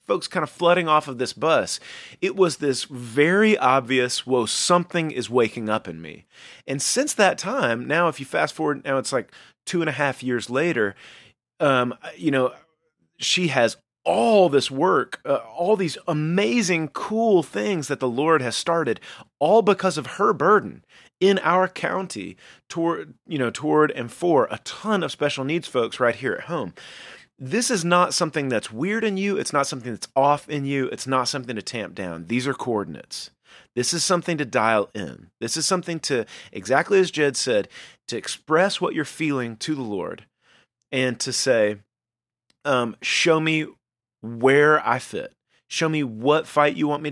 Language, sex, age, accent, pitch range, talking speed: English, male, 30-49, American, 125-175 Hz, 180 wpm